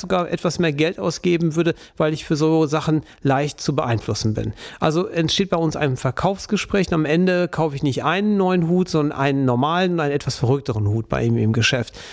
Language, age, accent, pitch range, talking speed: German, 40-59, German, 135-170 Hz, 210 wpm